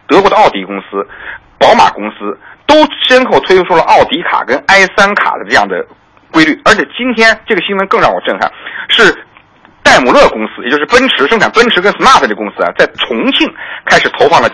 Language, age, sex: Chinese, 50-69, male